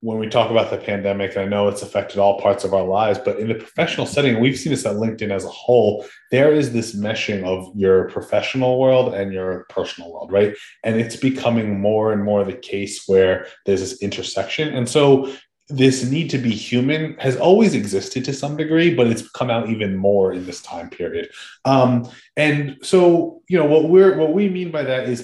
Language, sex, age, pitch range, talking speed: English, male, 20-39, 100-135 Hz, 210 wpm